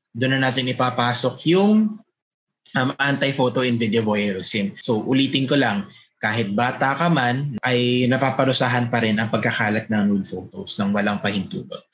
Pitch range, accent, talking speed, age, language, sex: 120-150 Hz, native, 145 wpm, 20-39, Filipino, male